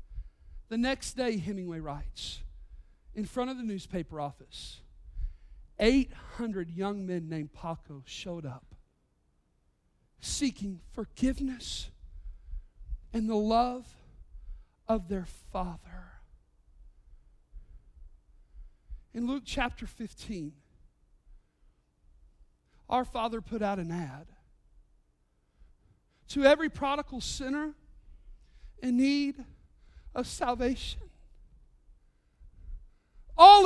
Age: 50-69